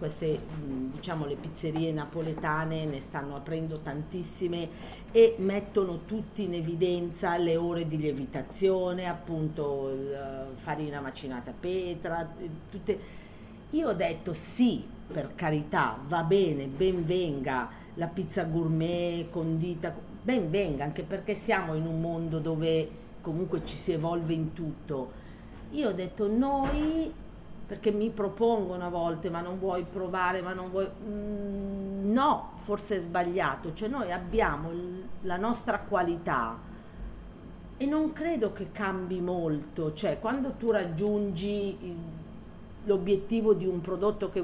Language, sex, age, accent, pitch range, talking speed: Italian, female, 40-59, native, 155-195 Hz, 130 wpm